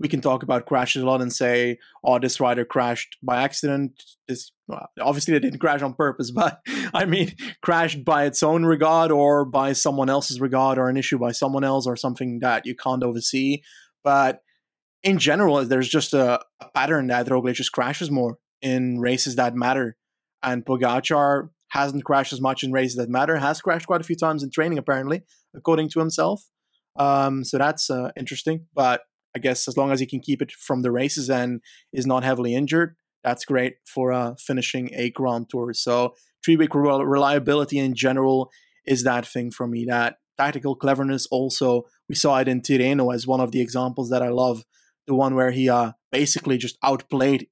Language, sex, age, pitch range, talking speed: English, male, 20-39, 125-140 Hz, 190 wpm